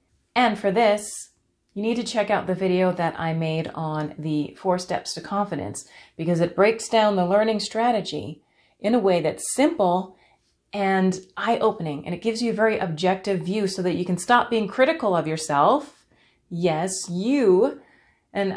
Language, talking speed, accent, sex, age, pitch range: English, 170 wpm, American, female, 30-49, 165-215 Hz